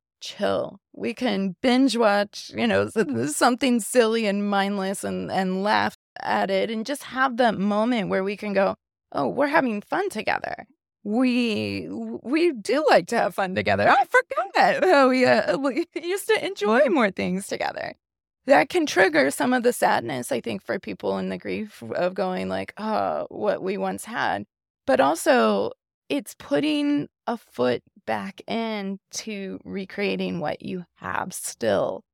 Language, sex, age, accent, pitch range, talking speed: English, female, 20-39, American, 185-260 Hz, 160 wpm